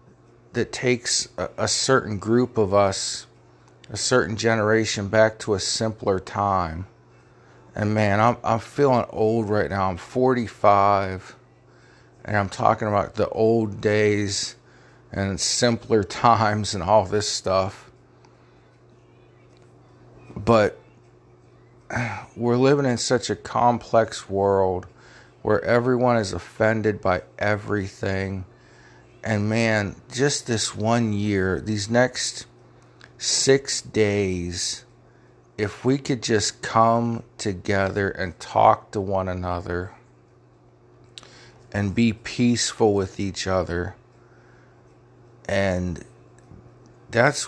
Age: 50-69